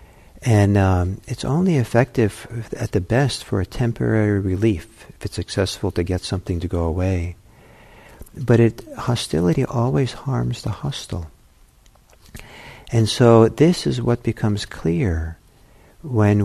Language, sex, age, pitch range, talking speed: English, male, 50-69, 90-120 Hz, 130 wpm